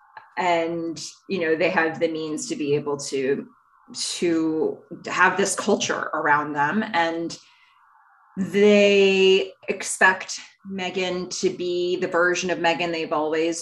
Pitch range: 165-230 Hz